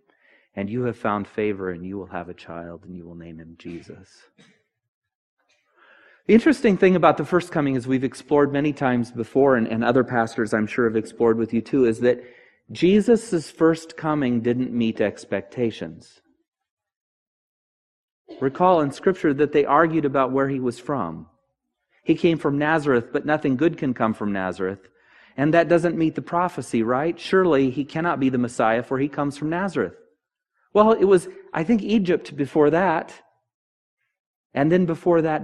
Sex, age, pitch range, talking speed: male, 30-49, 115-170 Hz, 170 wpm